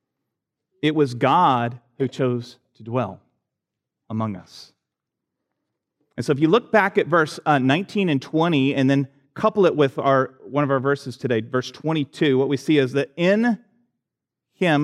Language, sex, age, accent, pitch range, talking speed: English, male, 30-49, American, 125-160 Hz, 160 wpm